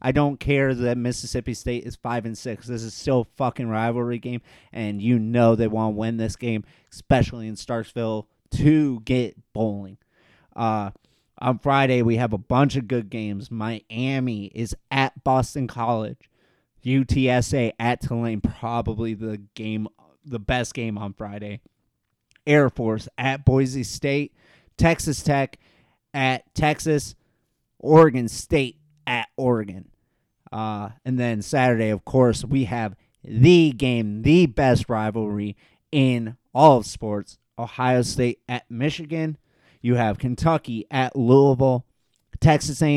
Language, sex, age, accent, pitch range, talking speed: English, male, 30-49, American, 115-140 Hz, 135 wpm